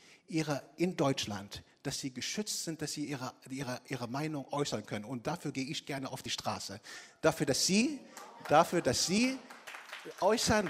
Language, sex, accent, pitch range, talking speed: German, male, German, 130-170 Hz, 170 wpm